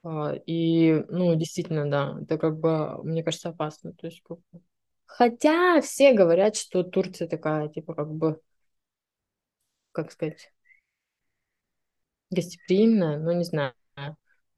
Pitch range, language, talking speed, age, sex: 155-180 Hz, Russian, 110 wpm, 20-39, female